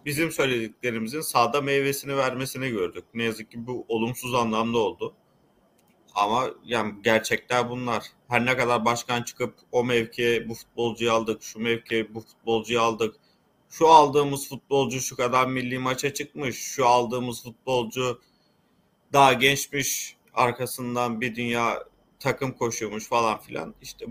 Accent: native